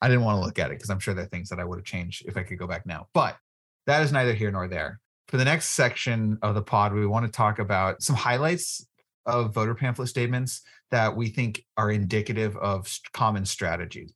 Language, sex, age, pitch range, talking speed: English, male, 30-49, 95-120 Hz, 240 wpm